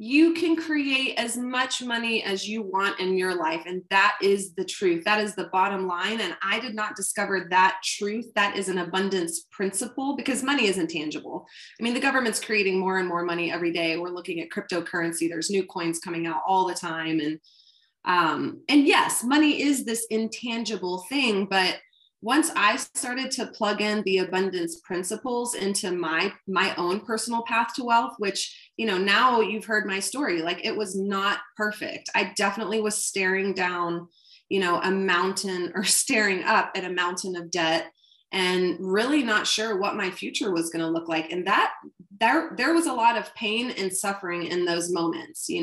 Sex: female